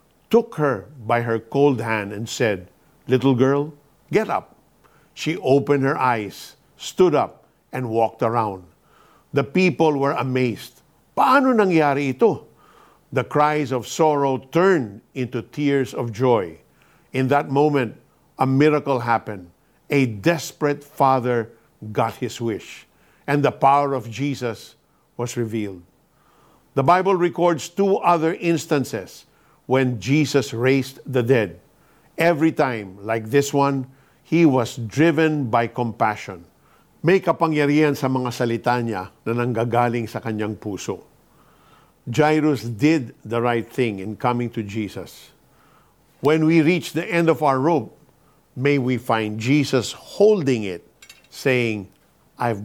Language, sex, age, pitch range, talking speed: Filipino, male, 50-69, 120-150 Hz, 130 wpm